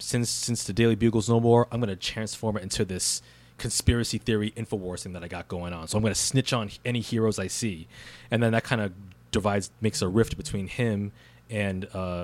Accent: American